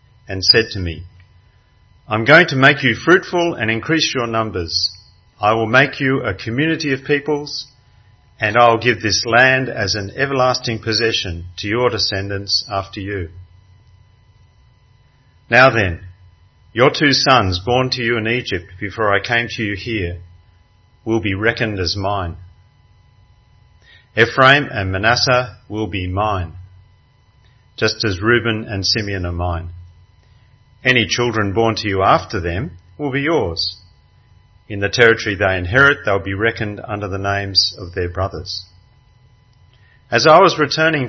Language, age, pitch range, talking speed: English, 40-59, 95-120 Hz, 145 wpm